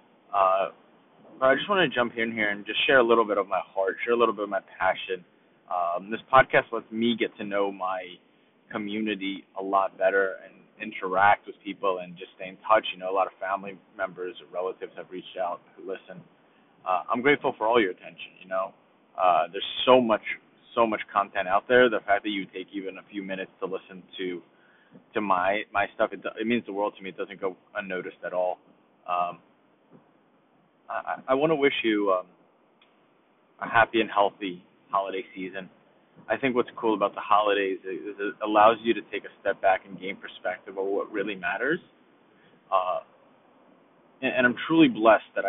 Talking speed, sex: 200 wpm, male